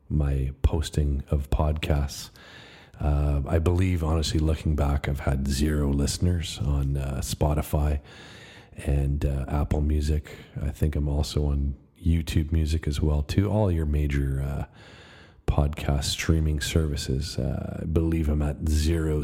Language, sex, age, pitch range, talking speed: English, male, 40-59, 75-85 Hz, 135 wpm